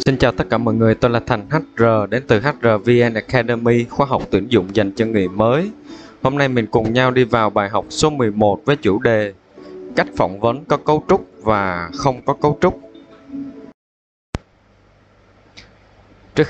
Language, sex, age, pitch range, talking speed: Vietnamese, male, 20-39, 95-120 Hz, 175 wpm